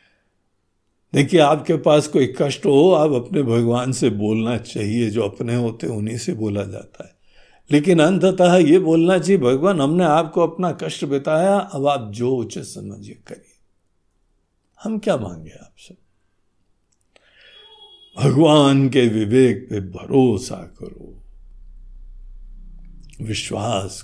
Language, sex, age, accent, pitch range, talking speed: Hindi, male, 60-79, native, 110-175 Hz, 120 wpm